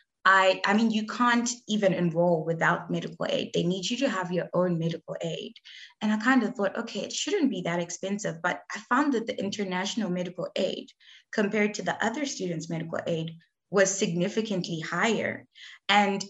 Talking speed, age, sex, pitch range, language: 180 wpm, 20-39, female, 175-225 Hz, English